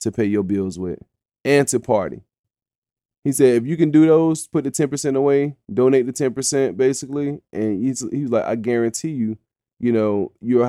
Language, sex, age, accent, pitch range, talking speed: English, male, 20-39, American, 105-125 Hz, 195 wpm